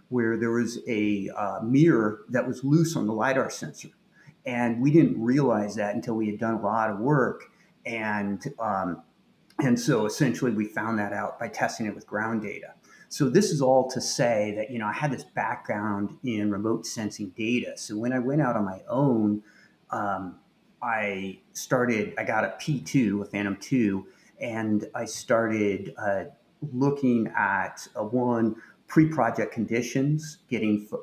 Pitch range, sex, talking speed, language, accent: 105-120 Hz, male, 170 wpm, English, American